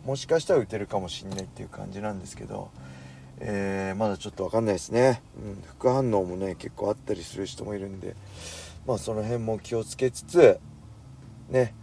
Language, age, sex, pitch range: Japanese, 40-59, male, 95-130 Hz